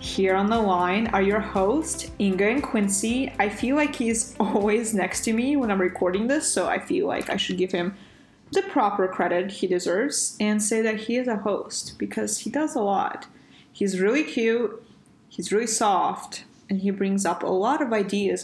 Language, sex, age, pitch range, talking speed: English, female, 20-39, 185-230 Hz, 200 wpm